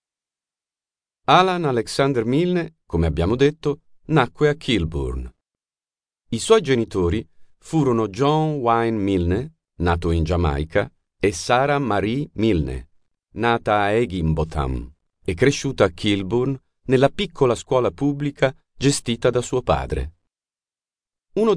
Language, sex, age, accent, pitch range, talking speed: Italian, male, 40-59, native, 85-125 Hz, 110 wpm